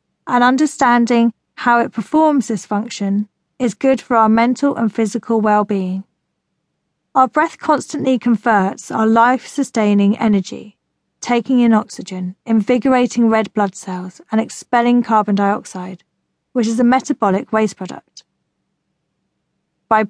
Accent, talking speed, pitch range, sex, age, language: British, 120 wpm, 205-250 Hz, female, 40-59, English